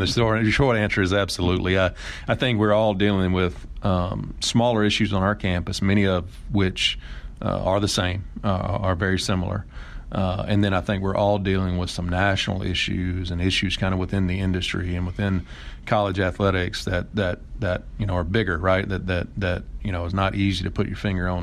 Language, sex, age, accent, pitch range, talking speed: English, male, 40-59, American, 90-105 Hz, 205 wpm